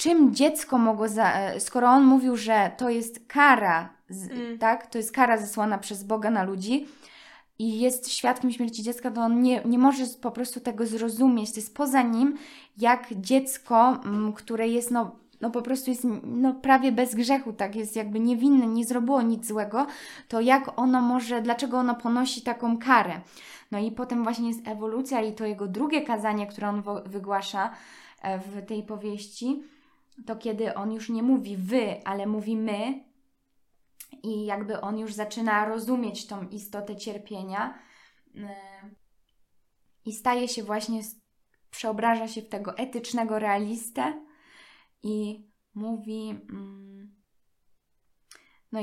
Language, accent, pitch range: Polish, native, 215-250 Hz